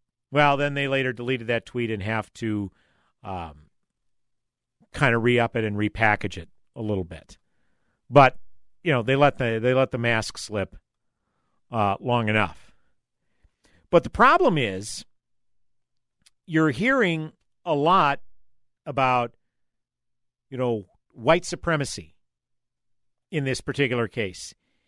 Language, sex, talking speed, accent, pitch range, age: English, male, 120 wpm, American, 110-140 Hz, 50-69